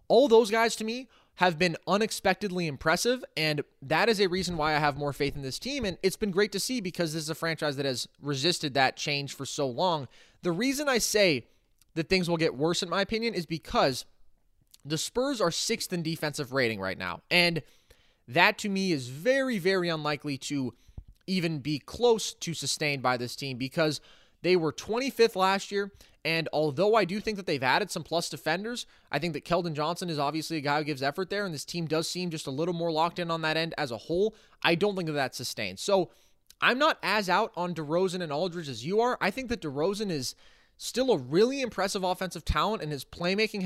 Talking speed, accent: 220 wpm, American